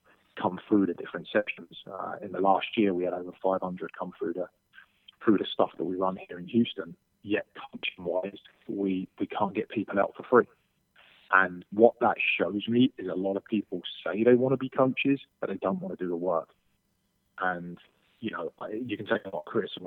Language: English